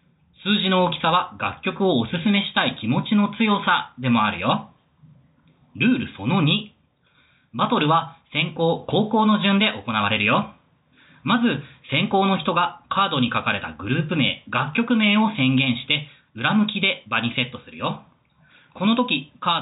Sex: male